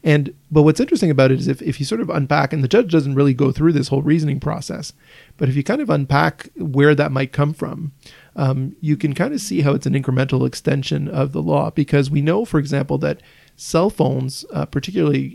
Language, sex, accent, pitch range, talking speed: English, male, American, 140-160 Hz, 230 wpm